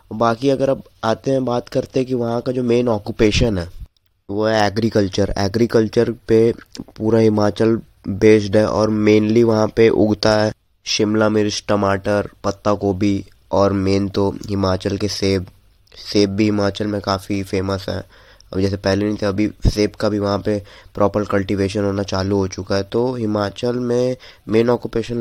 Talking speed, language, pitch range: 165 wpm, Hindi, 100-120 Hz